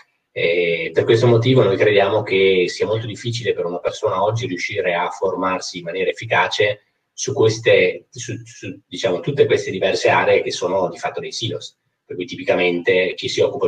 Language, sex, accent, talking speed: Italian, male, native, 180 wpm